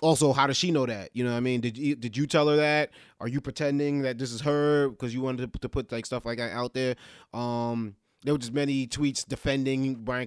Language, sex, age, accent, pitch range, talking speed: English, male, 20-39, American, 125-150 Hz, 270 wpm